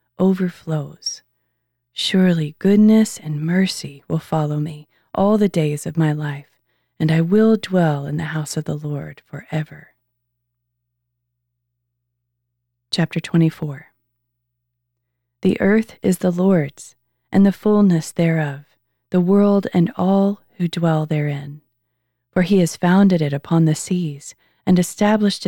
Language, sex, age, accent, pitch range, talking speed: English, female, 30-49, American, 140-185 Hz, 125 wpm